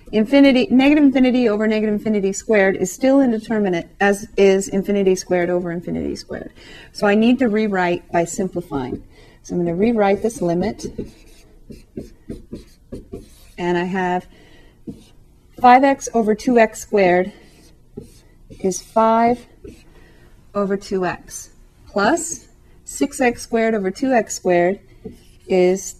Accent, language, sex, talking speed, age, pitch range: American, English, female, 115 wpm, 40-59, 180-230 Hz